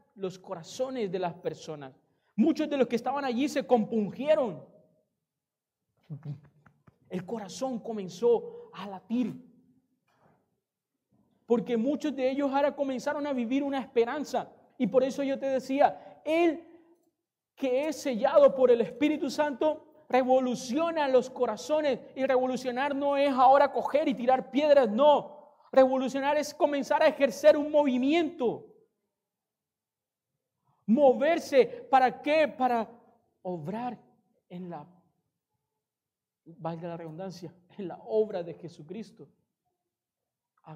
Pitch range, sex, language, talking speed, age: 175-280 Hz, male, Spanish, 115 wpm, 40-59